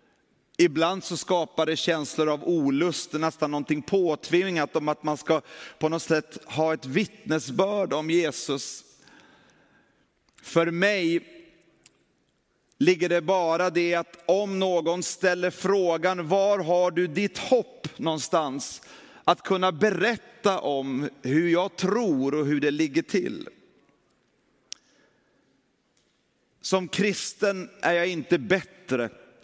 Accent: native